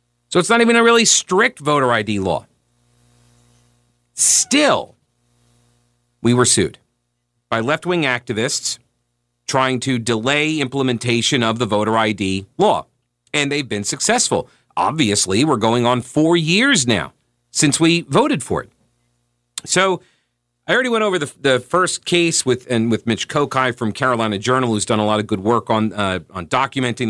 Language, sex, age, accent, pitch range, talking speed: English, male, 40-59, American, 115-150 Hz, 155 wpm